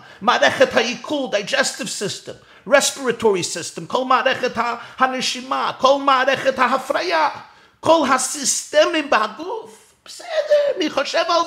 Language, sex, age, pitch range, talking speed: Hebrew, male, 50-69, 210-270 Hz, 100 wpm